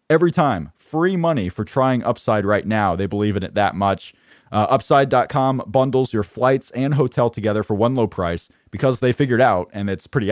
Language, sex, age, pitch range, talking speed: English, male, 30-49, 105-140 Hz, 200 wpm